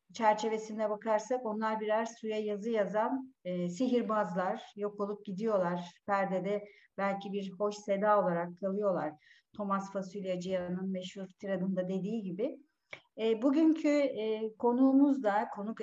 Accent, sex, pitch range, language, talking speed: native, female, 190-250 Hz, Turkish, 120 wpm